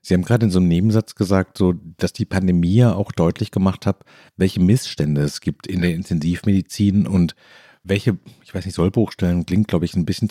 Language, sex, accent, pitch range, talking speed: German, male, German, 90-105 Hz, 210 wpm